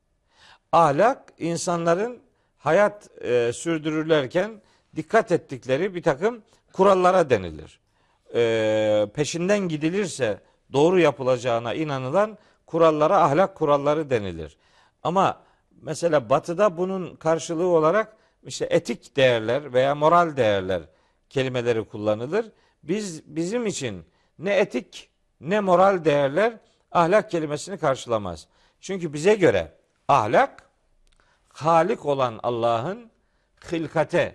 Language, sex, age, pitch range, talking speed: Turkish, male, 50-69, 130-185 Hz, 95 wpm